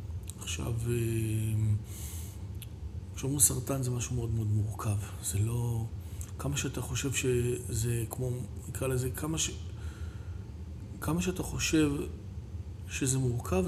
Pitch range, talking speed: 95-140 Hz, 105 wpm